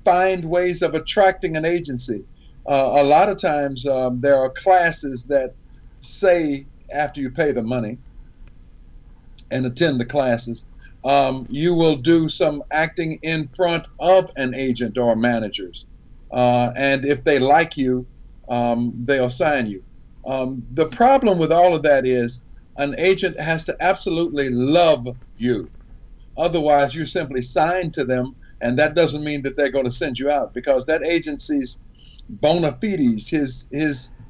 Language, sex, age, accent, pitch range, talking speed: English, male, 50-69, American, 130-175 Hz, 155 wpm